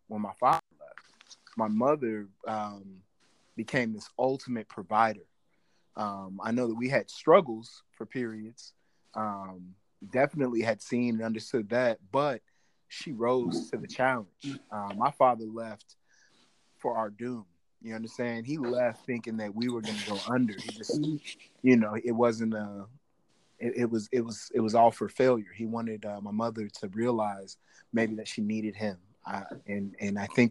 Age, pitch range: 20-39, 105-120 Hz